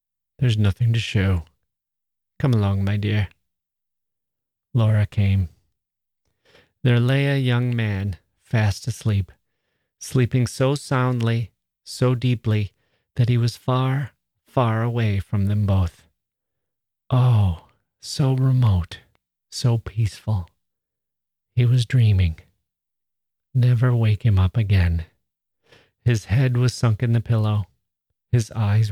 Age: 40-59